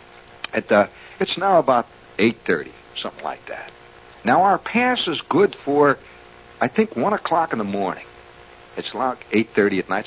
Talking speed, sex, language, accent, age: 155 wpm, male, English, American, 60-79